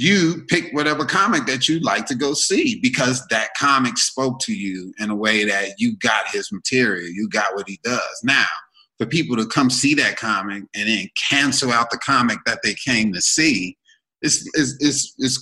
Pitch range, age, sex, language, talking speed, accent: 100-160 Hz, 30-49, male, English, 190 wpm, American